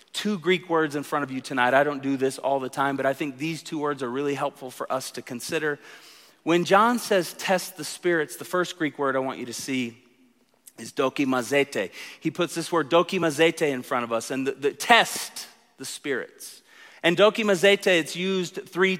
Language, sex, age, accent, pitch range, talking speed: English, male, 40-59, American, 140-180 Hz, 205 wpm